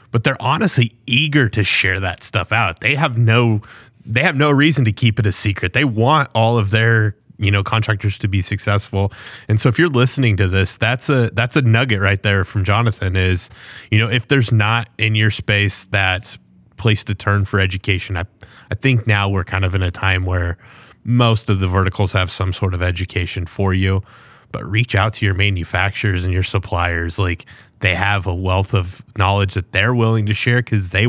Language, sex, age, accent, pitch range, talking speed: English, male, 20-39, American, 95-120 Hz, 210 wpm